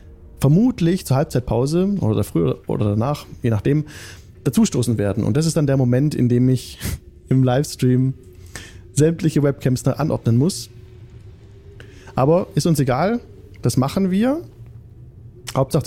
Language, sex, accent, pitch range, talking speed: German, male, German, 105-150 Hz, 130 wpm